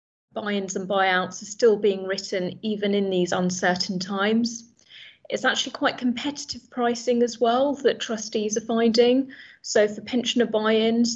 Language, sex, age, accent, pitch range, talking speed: English, female, 30-49, British, 195-230 Hz, 145 wpm